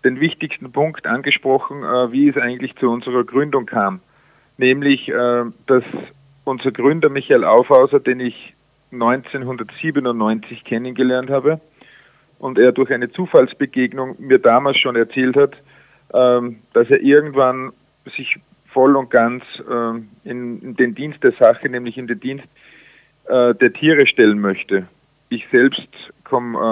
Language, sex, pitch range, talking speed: German, male, 125-150 Hz, 125 wpm